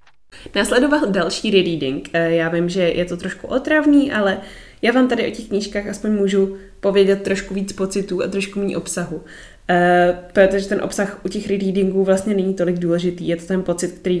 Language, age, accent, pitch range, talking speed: Czech, 20-39, native, 175-200 Hz, 180 wpm